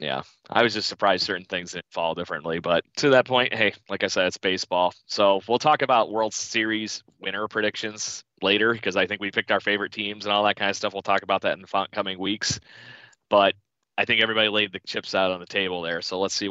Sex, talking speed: male, 240 wpm